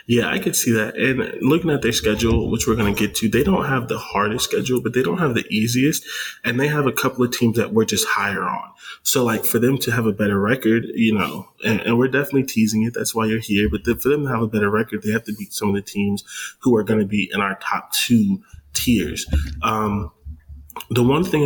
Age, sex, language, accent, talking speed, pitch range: 20-39, male, English, American, 255 wpm, 100-115 Hz